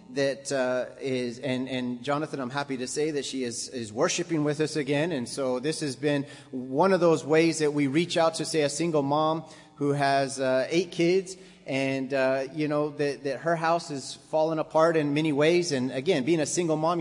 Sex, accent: male, American